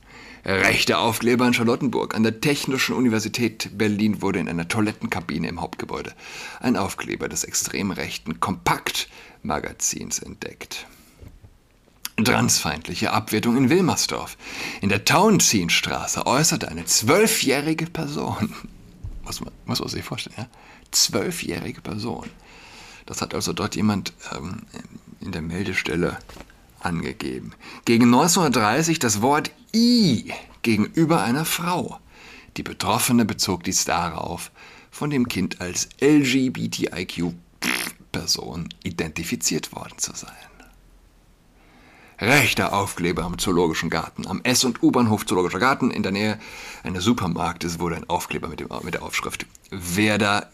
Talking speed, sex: 115 wpm, male